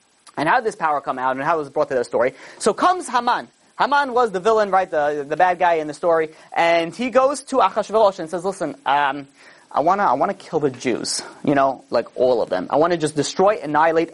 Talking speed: 240 wpm